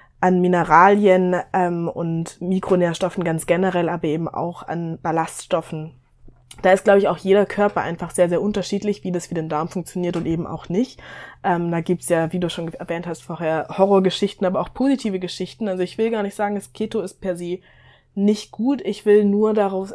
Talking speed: 200 wpm